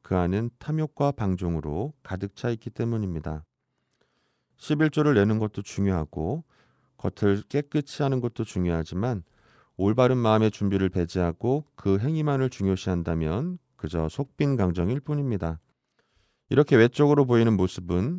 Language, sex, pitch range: Korean, male, 90-125 Hz